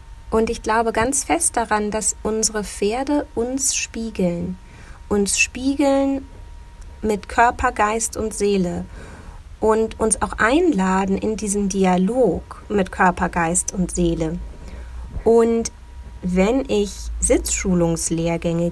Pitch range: 170-235 Hz